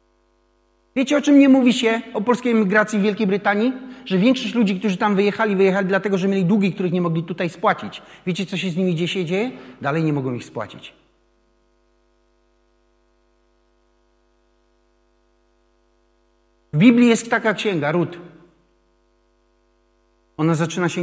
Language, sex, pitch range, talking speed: Polish, male, 115-185 Hz, 140 wpm